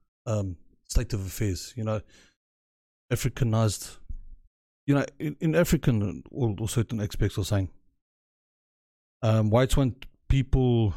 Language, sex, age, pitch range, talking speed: English, male, 30-49, 95-120 Hz, 120 wpm